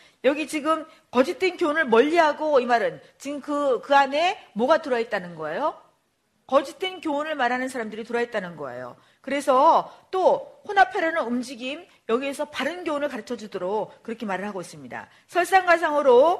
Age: 40-59